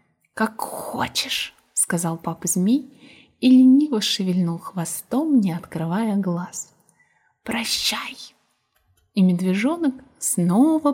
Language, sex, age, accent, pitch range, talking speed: Russian, female, 20-39, native, 185-265 Hz, 90 wpm